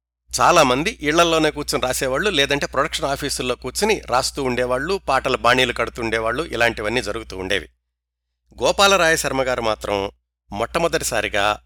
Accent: native